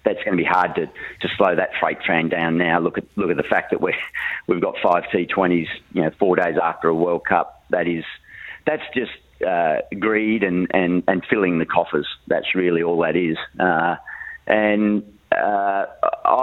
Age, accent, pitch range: 40-59, Australian, 95-115 Hz